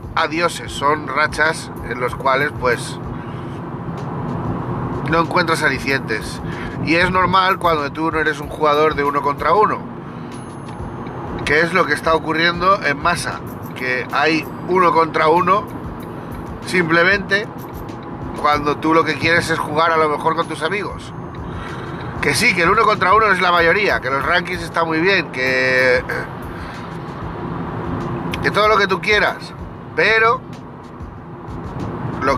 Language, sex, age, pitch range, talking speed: Spanish, male, 40-59, 125-165 Hz, 140 wpm